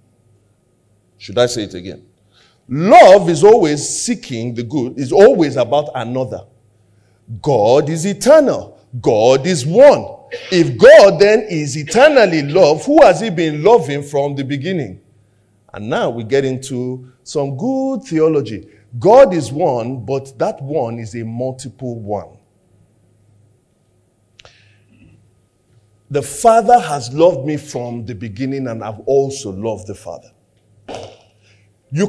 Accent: Nigerian